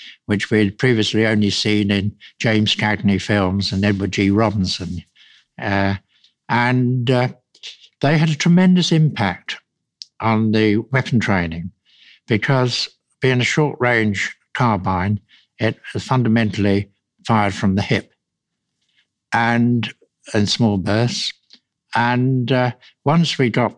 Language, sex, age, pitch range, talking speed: English, male, 60-79, 105-125 Hz, 115 wpm